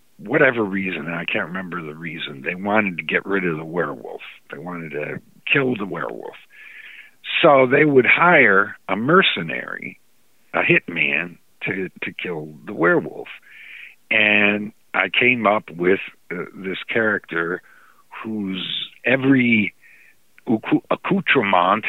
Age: 60-79